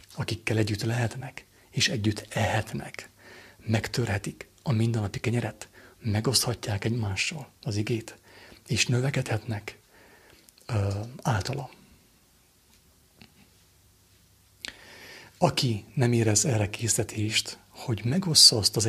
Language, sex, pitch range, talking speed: English, male, 100-120 Hz, 85 wpm